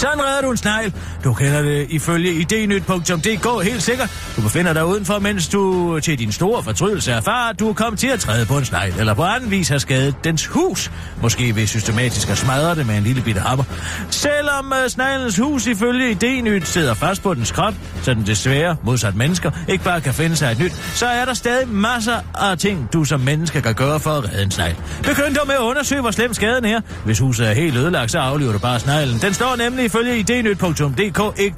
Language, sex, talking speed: Danish, male, 225 wpm